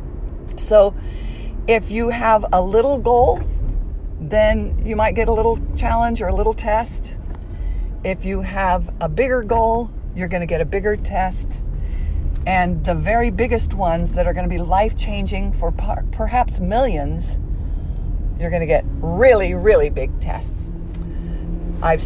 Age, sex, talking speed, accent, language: 50-69, female, 145 wpm, American, English